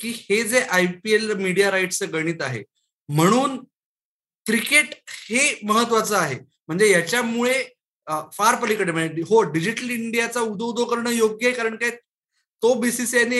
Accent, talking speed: native, 100 wpm